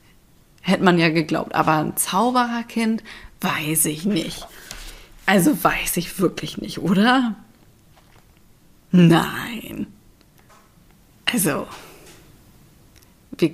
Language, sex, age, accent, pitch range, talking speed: German, female, 30-49, German, 165-210 Hz, 85 wpm